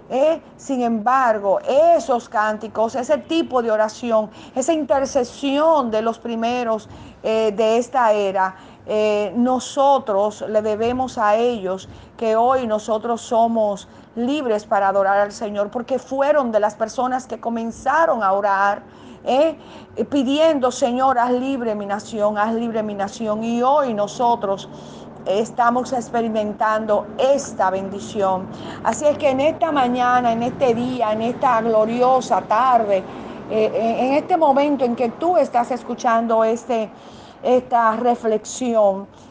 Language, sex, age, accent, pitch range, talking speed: Spanish, female, 40-59, American, 210-255 Hz, 130 wpm